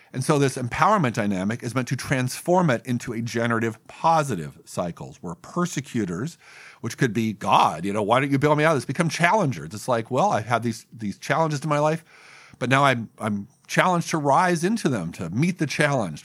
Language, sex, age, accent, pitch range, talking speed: English, male, 50-69, American, 115-155 Hz, 210 wpm